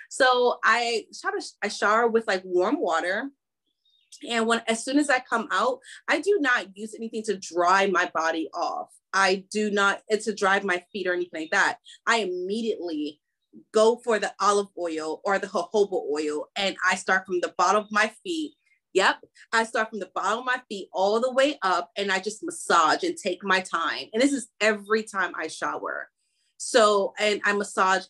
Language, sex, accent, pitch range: English, female, American, 195-265 Hz